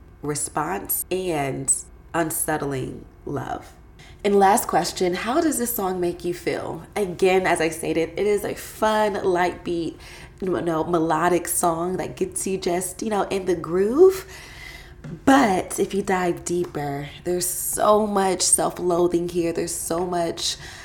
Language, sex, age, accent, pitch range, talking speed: English, female, 20-39, American, 150-195 Hz, 145 wpm